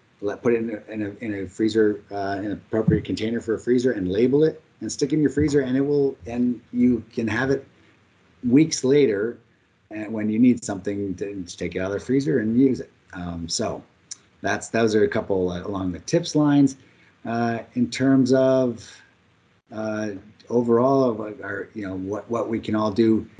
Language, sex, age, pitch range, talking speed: English, male, 30-49, 105-125 Hz, 210 wpm